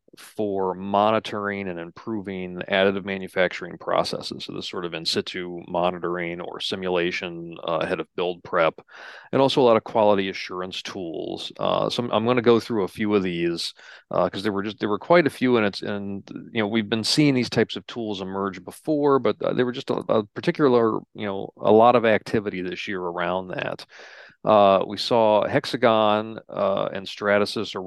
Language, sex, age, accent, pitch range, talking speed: English, male, 40-59, American, 90-110 Hz, 195 wpm